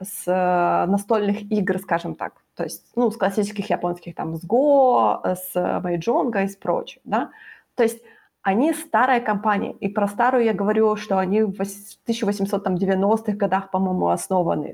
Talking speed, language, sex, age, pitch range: 150 wpm, Ukrainian, female, 20-39, 190-225 Hz